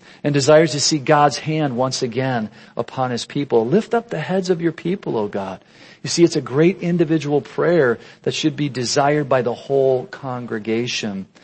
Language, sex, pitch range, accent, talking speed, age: English, male, 125-160 Hz, American, 185 wpm, 50-69